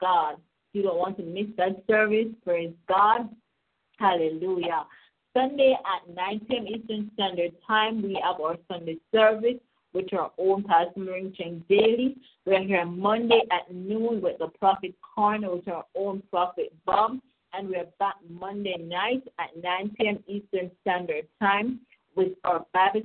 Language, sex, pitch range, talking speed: English, female, 175-215 Hz, 155 wpm